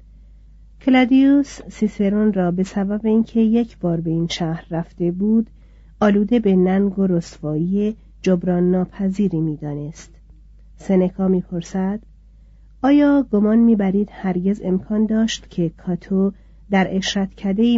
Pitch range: 175-210 Hz